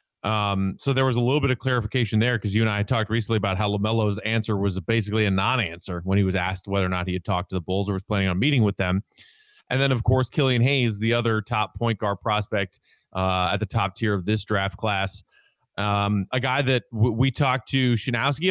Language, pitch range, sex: English, 110-130 Hz, male